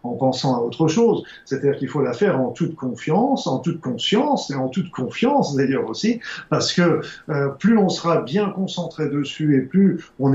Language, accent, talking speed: French, French, 195 wpm